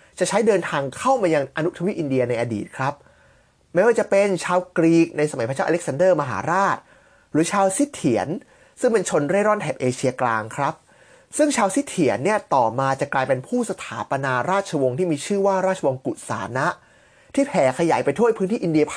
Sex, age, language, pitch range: male, 20-39, Thai, 145-215 Hz